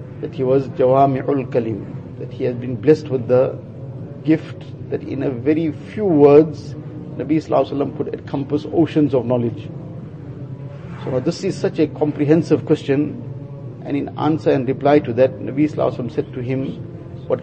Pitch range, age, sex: 135-150 Hz, 50-69, male